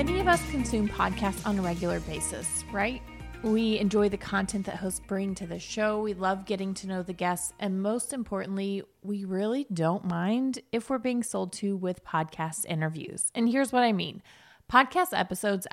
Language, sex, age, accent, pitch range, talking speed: English, female, 20-39, American, 180-240 Hz, 185 wpm